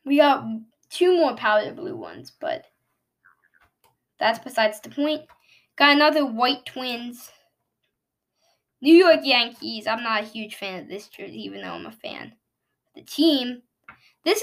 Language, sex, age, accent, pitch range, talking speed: English, female, 10-29, American, 225-325 Hz, 145 wpm